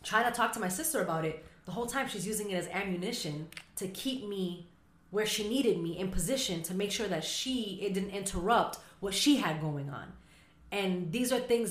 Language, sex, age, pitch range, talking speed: English, female, 20-39, 165-210 Hz, 215 wpm